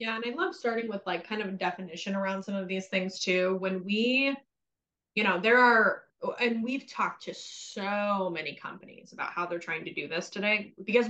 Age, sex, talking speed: 20-39, female, 210 wpm